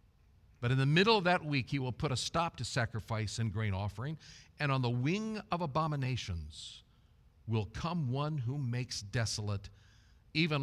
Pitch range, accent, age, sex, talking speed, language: 100-135 Hz, American, 50-69, male, 170 wpm, English